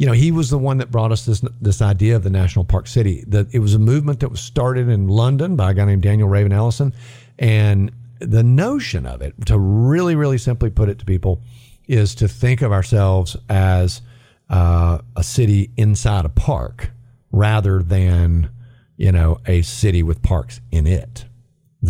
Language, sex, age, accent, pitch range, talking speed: English, male, 50-69, American, 95-120 Hz, 190 wpm